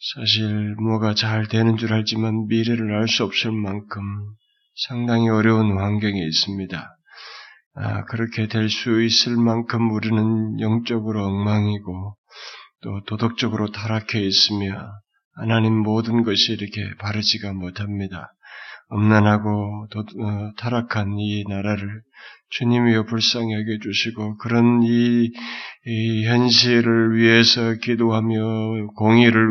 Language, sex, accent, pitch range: Korean, male, native, 105-120 Hz